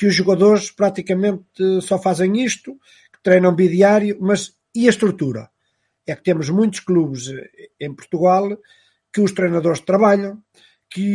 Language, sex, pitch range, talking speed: Portuguese, male, 155-200 Hz, 140 wpm